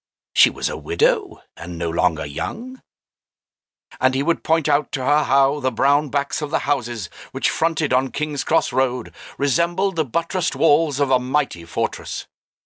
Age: 60-79